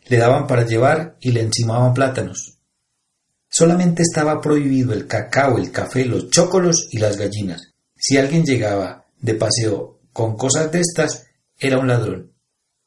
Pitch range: 115-140 Hz